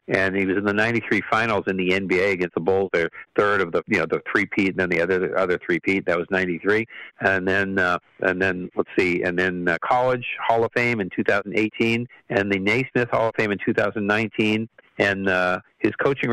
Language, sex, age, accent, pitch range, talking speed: English, male, 50-69, American, 95-110 Hz, 215 wpm